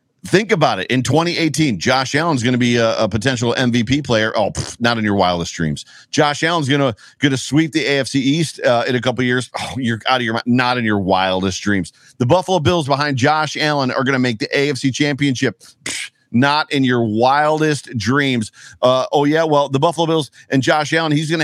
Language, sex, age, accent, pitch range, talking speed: English, male, 40-59, American, 120-145 Hz, 220 wpm